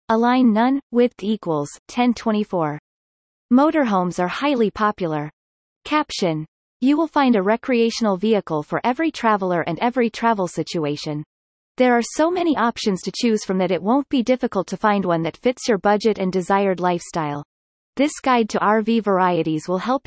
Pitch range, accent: 180-245 Hz, American